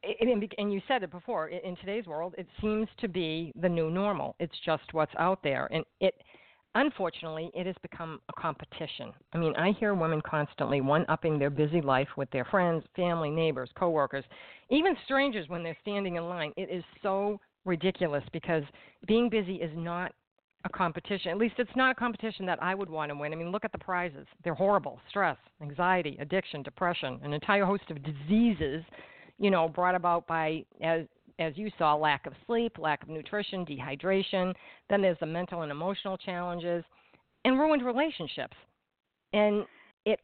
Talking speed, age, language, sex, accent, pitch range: 180 wpm, 50-69, English, female, American, 160-200 Hz